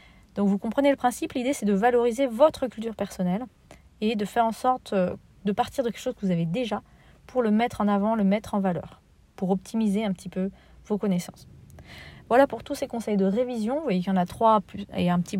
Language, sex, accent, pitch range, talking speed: French, female, French, 185-225 Hz, 235 wpm